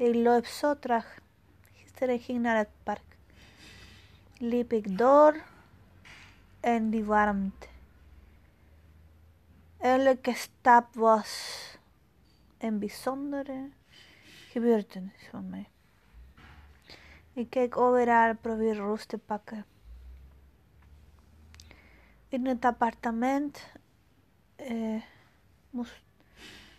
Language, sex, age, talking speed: Dutch, female, 30-49, 80 wpm